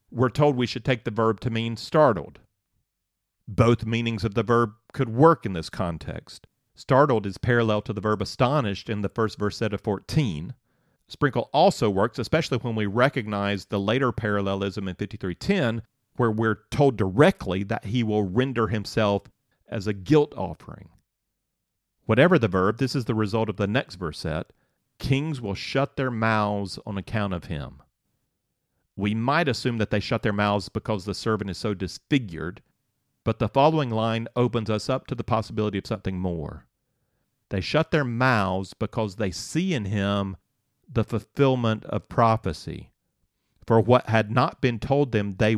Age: 40-59